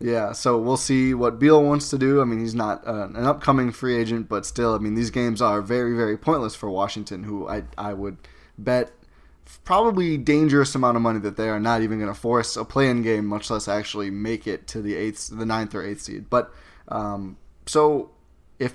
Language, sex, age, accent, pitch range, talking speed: English, male, 20-39, American, 105-125 Hz, 215 wpm